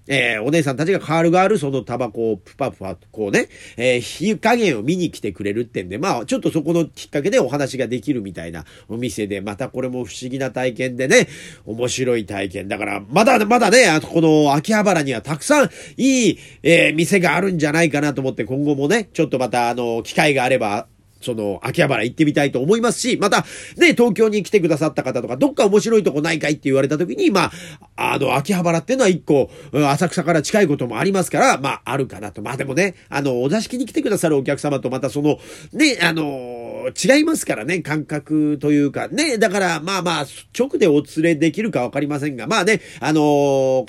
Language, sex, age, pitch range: Japanese, male, 40-59, 125-180 Hz